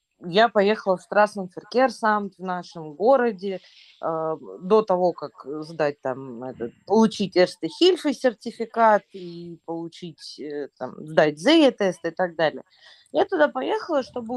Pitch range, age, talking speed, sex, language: 175-275 Hz, 20-39, 130 wpm, female, Russian